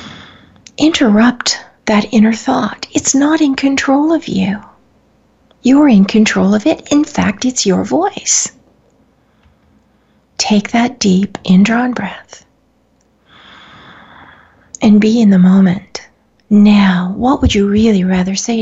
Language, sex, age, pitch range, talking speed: English, female, 40-59, 190-235 Hz, 120 wpm